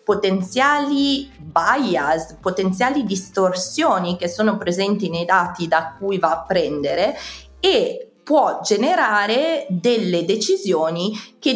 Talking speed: 105 wpm